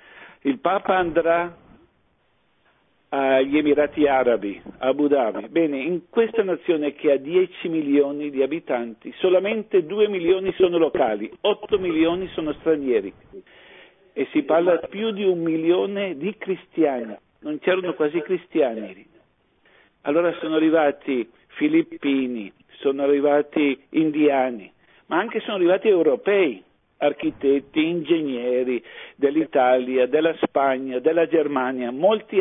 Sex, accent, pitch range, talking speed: male, native, 145-185 Hz, 115 wpm